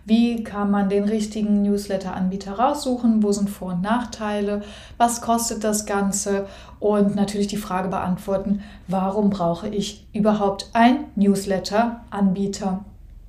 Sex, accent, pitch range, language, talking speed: female, German, 195-225 Hz, German, 120 wpm